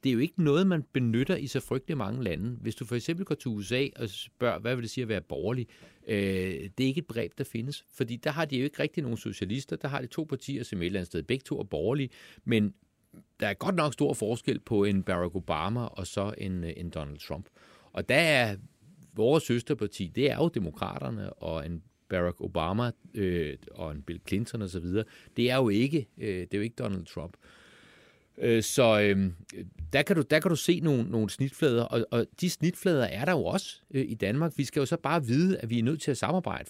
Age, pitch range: 40-59, 105-145 Hz